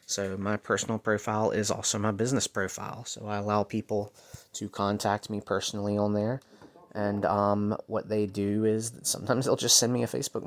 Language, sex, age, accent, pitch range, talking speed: English, male, 30-49, American, 100-115 Hz, 185 wpm